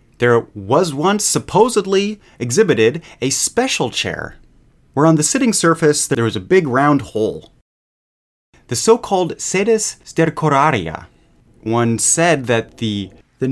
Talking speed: 125 wpm